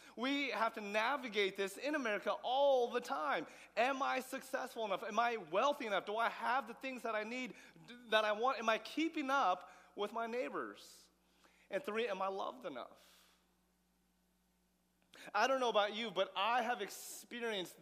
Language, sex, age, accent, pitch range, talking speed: English, male, 30-49, American, 195-265 Hz, 170 wpm